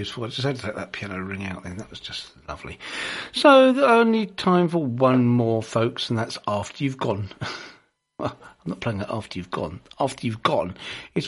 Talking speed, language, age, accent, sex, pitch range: 215 wpm, English, 50-69, British, male, 110-170 Hz